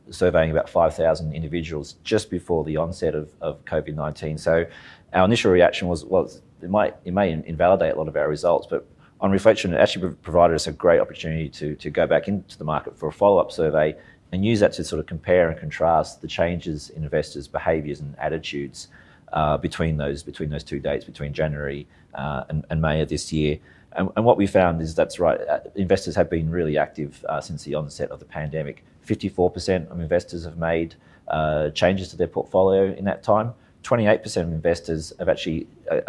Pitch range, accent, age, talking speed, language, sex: 75-90 Hz, Australian, 30-49, 195 wpm, English, male